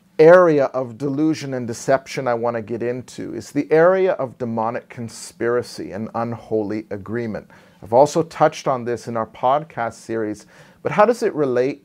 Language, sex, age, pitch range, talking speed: English, male, 40-59, 115-145 Hz, 165 wpm